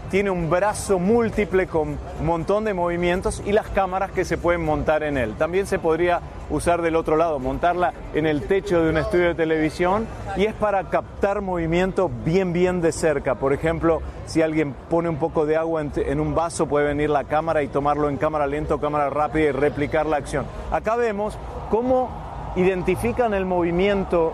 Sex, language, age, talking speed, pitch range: male, Spanish, 40-59, 190 wpm, 155-190 Hz